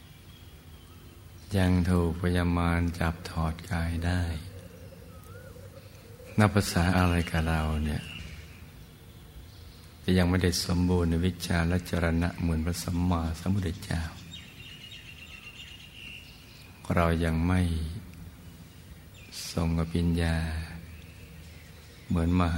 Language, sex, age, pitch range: Thai, male, 60-79, 80-90 Hz